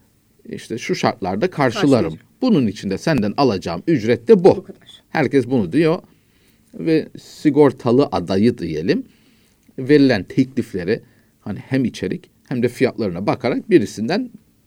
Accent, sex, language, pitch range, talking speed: native, male, Turkish, 105-150 Hz, 115 wpm